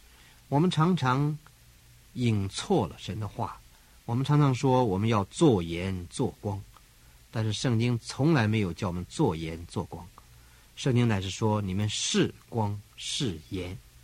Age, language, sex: 50-69, Chinese, male